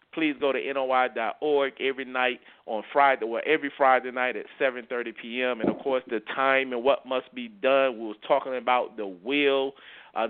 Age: 30-49